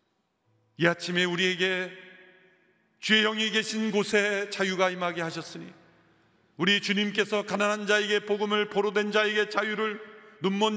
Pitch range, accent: 185-220 Hz, native